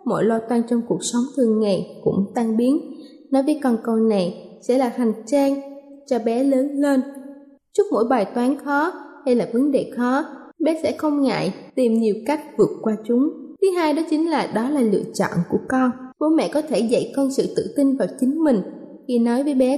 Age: 20-39